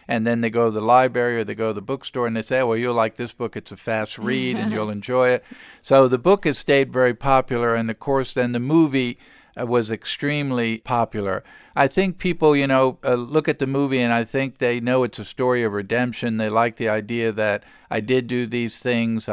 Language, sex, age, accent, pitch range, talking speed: English, male, 50-69, American, 115-135 Hz, 230 wpm